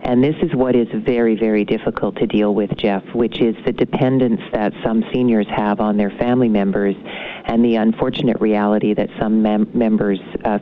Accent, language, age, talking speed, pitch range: American, English, 50-69, 185 wpm, 110-120 Hz